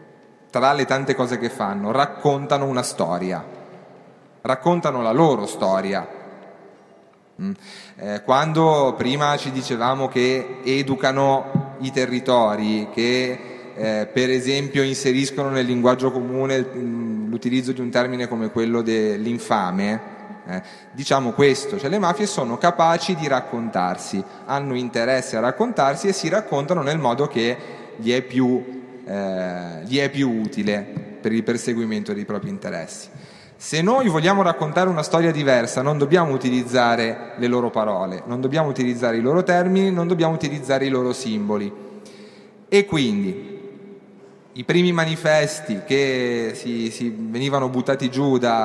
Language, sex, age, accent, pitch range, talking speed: Italian, male, 30-49, native, 120-155 Hz, 125 wpm